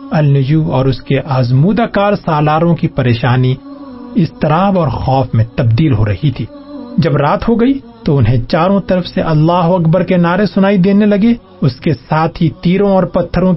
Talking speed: 175 wpm